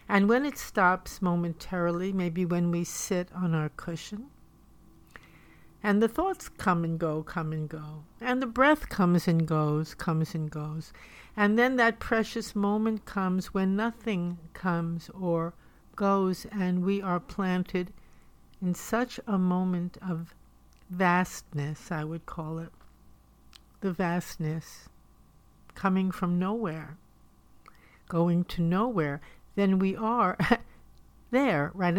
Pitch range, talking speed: 170-220 Hz, 130 wpm